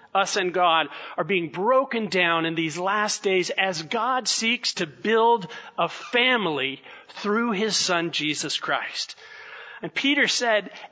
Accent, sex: American, male